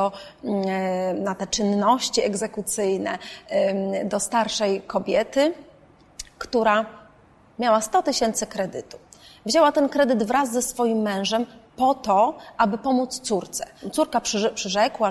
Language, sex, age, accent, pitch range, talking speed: Polish, female, 30-49, native, 210-295 Hz, 105 wpm